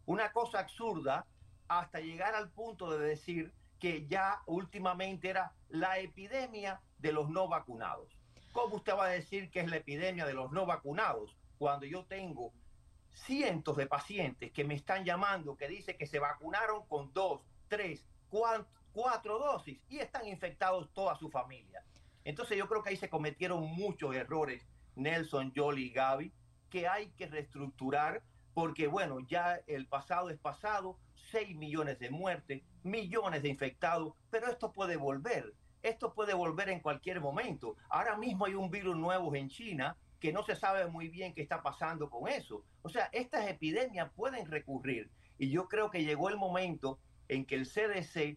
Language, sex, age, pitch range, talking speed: Spanish, male, 50-69, 145-190 Hz, 170 wpm